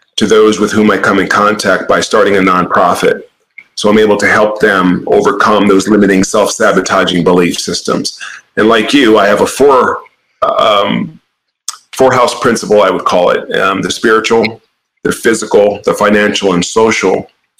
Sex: male